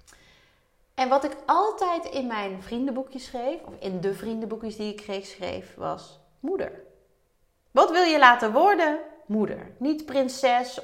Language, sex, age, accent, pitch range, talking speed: Dutch, female, 30-49, Dutch, 195-240 Hz, 145 wpm